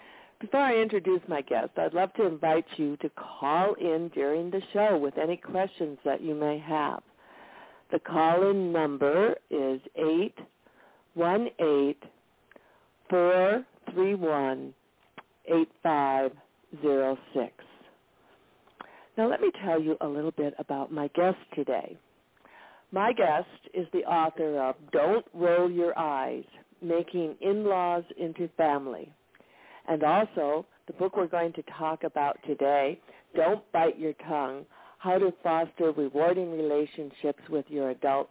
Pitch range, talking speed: 145-180 Hz, 120 wpm